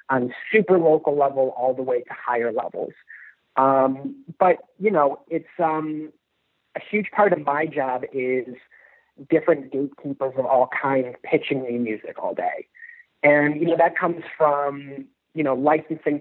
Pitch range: 135-160 Hz